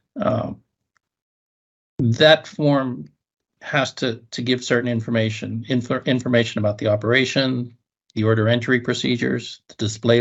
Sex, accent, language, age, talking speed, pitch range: male, American, English, 50-69, 110 wpm, 110-130 Hz